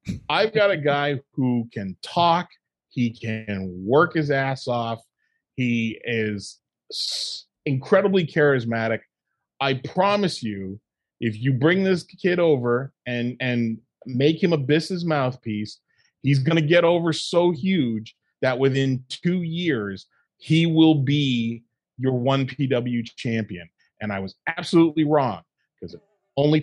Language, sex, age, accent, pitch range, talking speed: English, male, 30-49, American, 110-150 Hz, 135 wpm